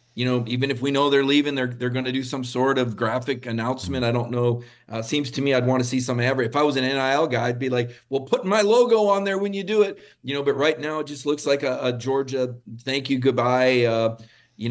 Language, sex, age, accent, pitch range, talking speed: English, male, 40-59, American, 115-140 Hz, 275 wpm